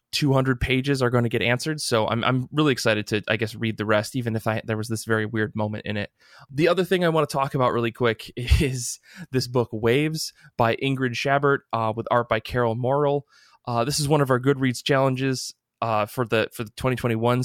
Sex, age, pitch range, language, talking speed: male, 20-39, 115-135 Hz, English, 225 wpm